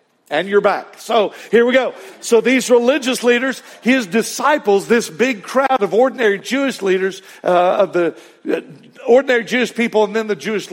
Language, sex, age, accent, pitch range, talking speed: English, male, 50-69, American, 155-230 Hz, 175 wpm